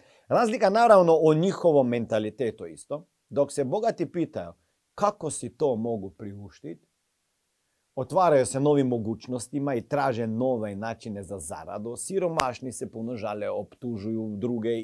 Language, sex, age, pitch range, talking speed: Croatian, male, 40-59, 110-140 Hz, 120 wpm